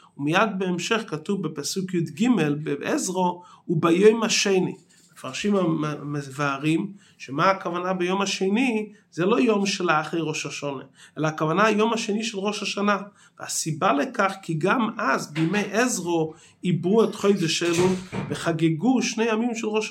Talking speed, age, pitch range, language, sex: 130 wpm, 30-49, 170-215 Hz, Hebrew, male